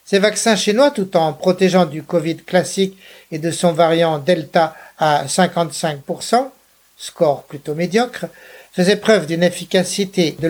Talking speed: 135 wpm